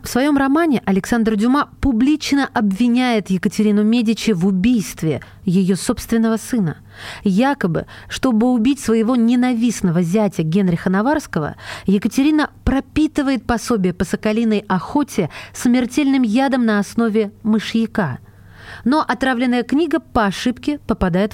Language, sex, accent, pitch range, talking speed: Russian, female, native, 190-250 Hz, 110 wpm